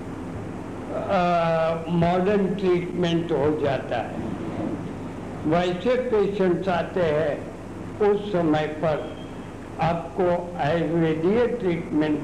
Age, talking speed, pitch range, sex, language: 60-79, 80 wpm, 150-190 Hz, male, Hindi